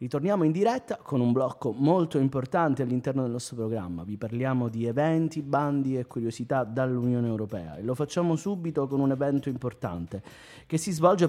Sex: male